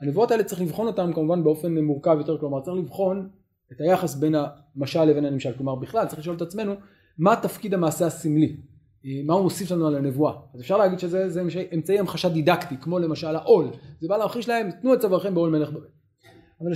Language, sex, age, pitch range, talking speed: Hebrew, male, 30-49, 145-190 Hz, 205 wpm